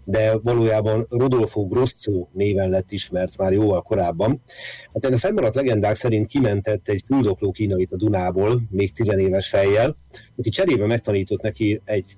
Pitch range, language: 100-115 Hz, Hungarian